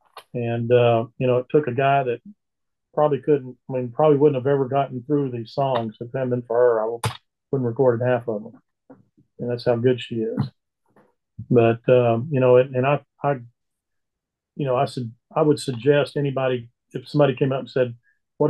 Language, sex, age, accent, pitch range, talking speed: English, male, 40-59, American, 125-150 Hz, 205 wpm